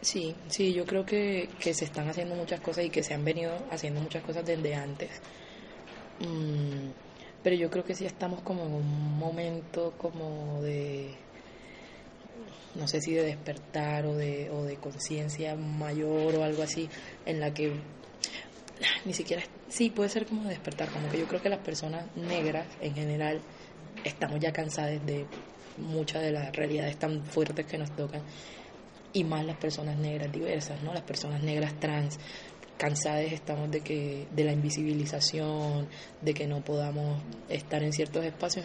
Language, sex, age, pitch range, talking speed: Spanish, female, 20-39, 150-160 Hz, 165 wpm